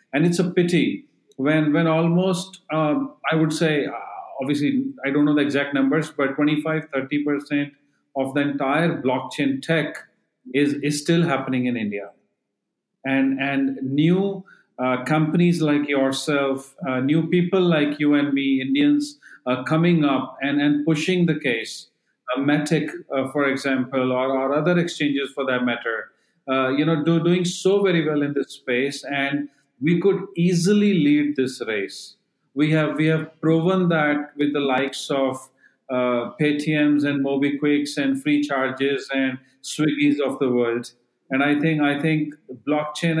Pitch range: 135-160 Hz